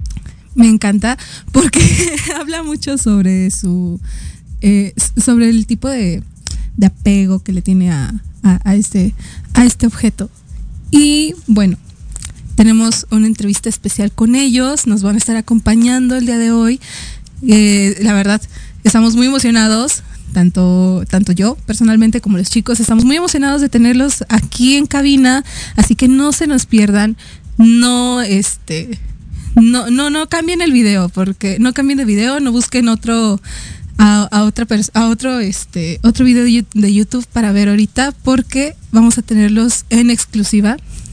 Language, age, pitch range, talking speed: Spanish, 20-39, 205-250 Hz, 150 wpm